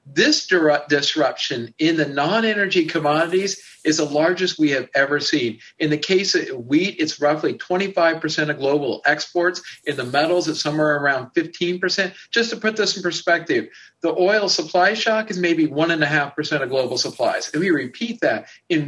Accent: American